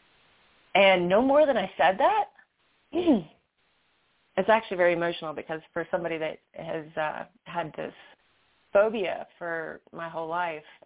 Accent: American